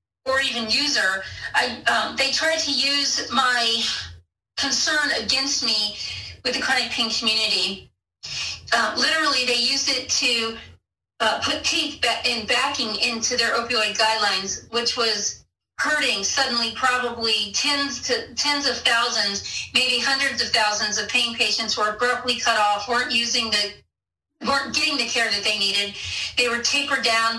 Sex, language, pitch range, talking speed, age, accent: female, English, 220-255 Hz, 155 wpm, 40-59, American